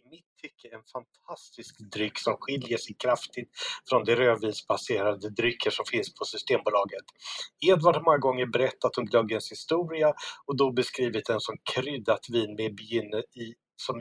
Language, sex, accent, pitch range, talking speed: English, male, Swedish, 115-185 Hz, 150 wpm